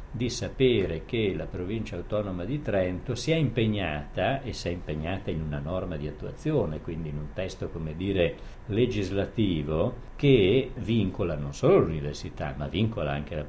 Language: Italian